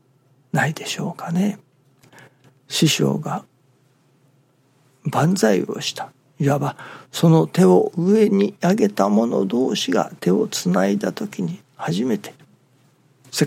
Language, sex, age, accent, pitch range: Japanese, male, 60-79, native, 130-175 Hz